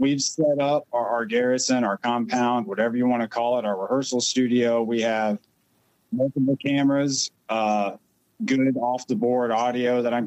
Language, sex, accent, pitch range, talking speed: English, male, American, 110-135 Hz, 170 wpm